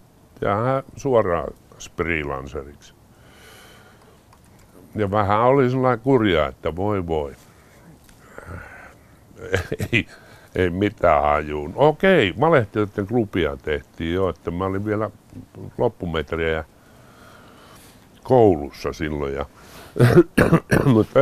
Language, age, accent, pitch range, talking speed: Finnish, 60-79, American, 80-115 Hz, 80 wpm